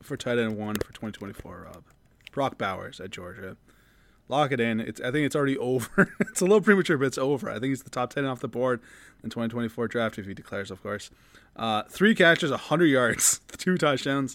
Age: 20-39